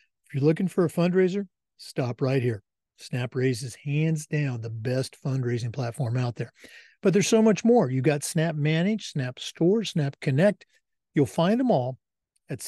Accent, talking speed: American, 160 wpm